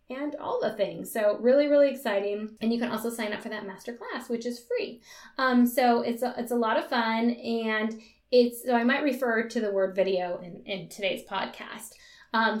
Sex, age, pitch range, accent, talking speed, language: female, 10-29, 215-280 Hz, American, 205 wpm, English